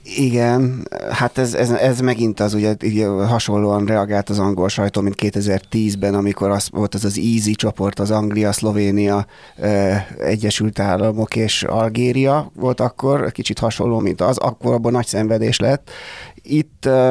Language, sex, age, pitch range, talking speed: Hungarian, male, 30-49, 105-125 Hz, 150 wpm